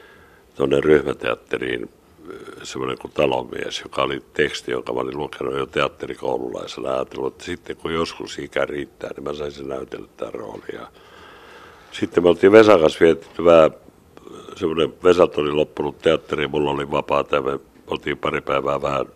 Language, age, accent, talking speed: Finnish, 60-79, native, 140 wpm